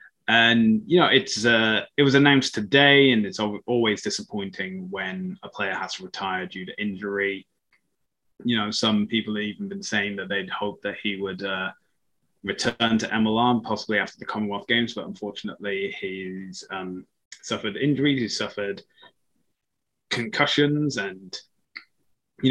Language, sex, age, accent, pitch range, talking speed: English, male, 20-39, British, 100-130 Hz, 150 wpm